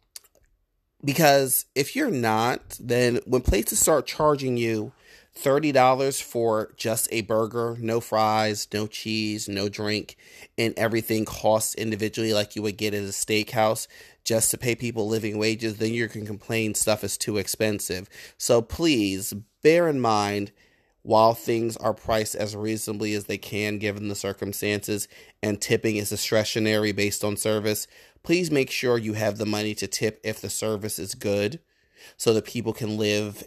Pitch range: 100-120 Hz